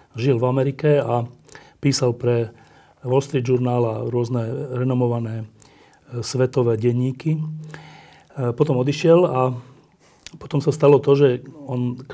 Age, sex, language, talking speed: 40-59, male, Slovak, 120 wpm